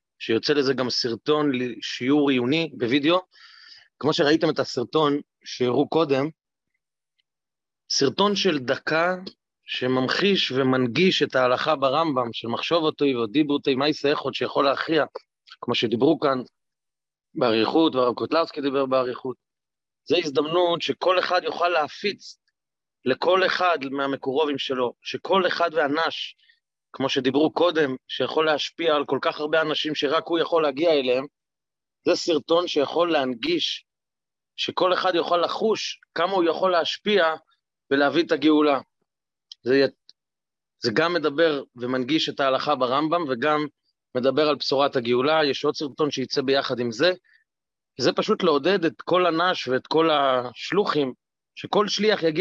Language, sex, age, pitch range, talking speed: English, male, 30-49, 135-170 Hz, 125 wpm